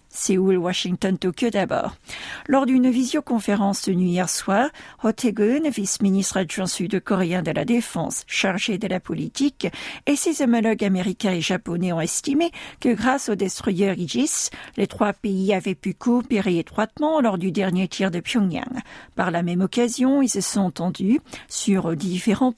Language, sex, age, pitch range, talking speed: French, female, 50-69, 180-240 Hz, 155 wpm